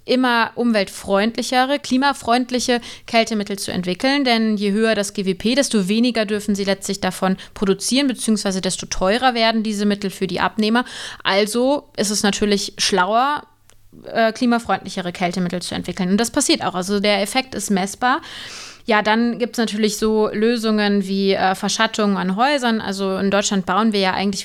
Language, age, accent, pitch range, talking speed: German, 20-39, German, 195-225 Hz, 155 wpm